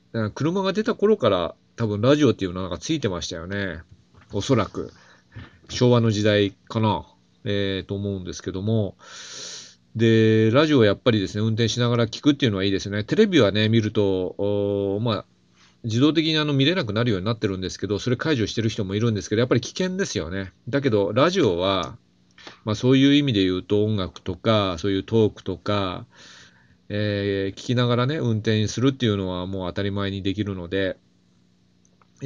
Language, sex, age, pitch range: Japanese, male, 40-59, 95-115 Hz